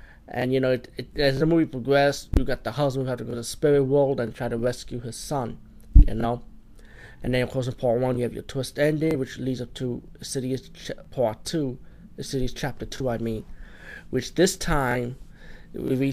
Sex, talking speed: male, 215 wpm